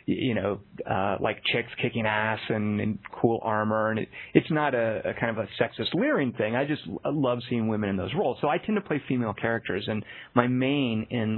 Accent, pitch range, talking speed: American, 110-145 Hz, 220 wpm